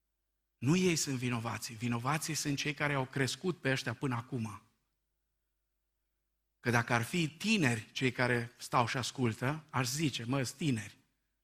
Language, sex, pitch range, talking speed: Romanian, male, 125-160 Hz, 150 wpm